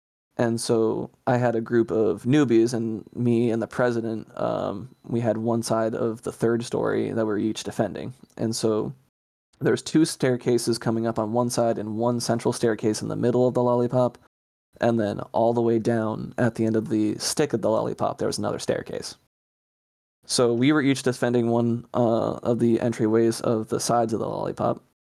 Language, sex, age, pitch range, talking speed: English, male, 20-39, 110-120 Hz, 195 wpm